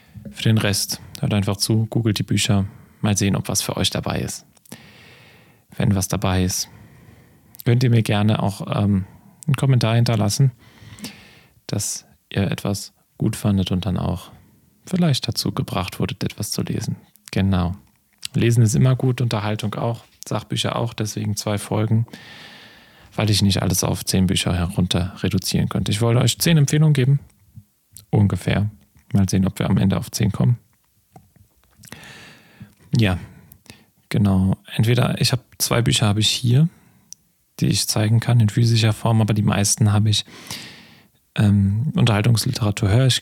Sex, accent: male, German